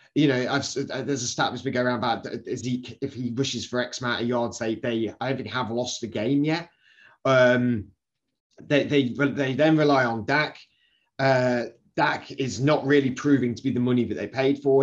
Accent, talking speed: British, 215 wpm